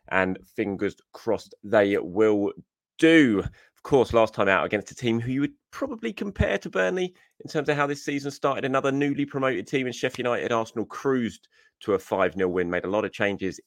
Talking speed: 200 wpm